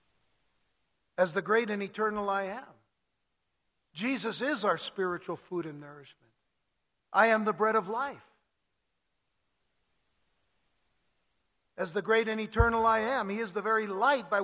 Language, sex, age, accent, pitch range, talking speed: English, male, 60-79, American, 170-225 Hz, 135 wpm